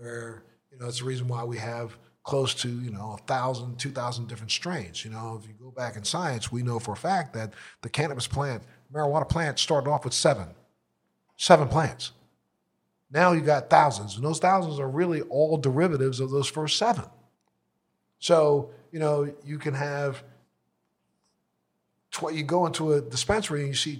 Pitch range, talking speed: 125-155 Hz, 180 wpm